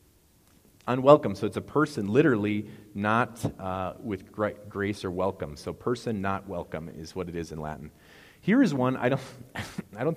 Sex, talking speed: male, 175 wpm